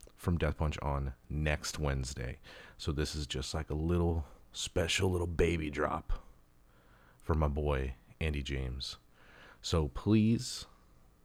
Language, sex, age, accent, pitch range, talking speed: English, male, 30-49, American, 70-90 Hz, 130 wpm